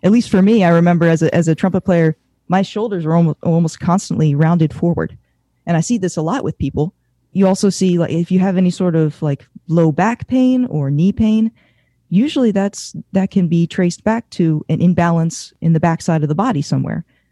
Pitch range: 160-195 Hz